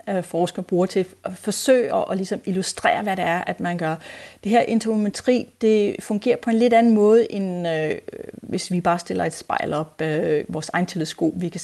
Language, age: Danish, 30-49